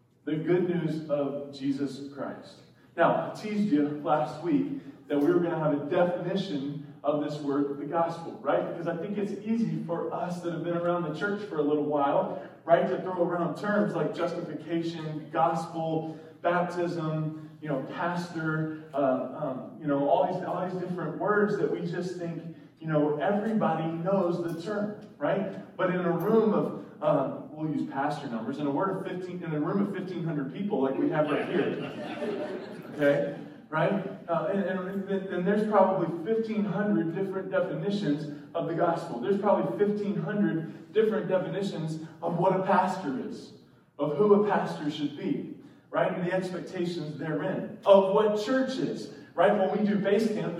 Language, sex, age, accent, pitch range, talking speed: English, male, 20-39, American, 155-195 Hz, 180 wpm